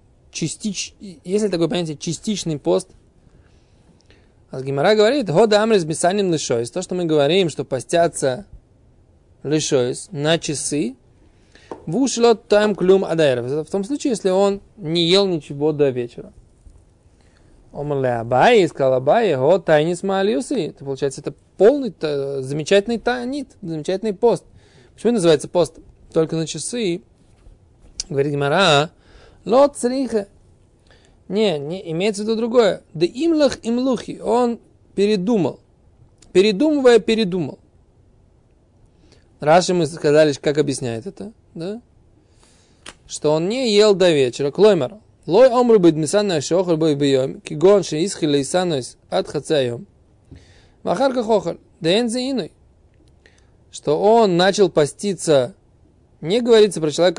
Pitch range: 135-205 Hz